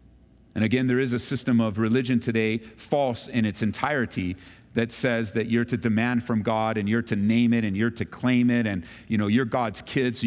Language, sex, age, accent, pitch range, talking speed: English, male, 40-59, American, 115-155 Hz, 220 wpm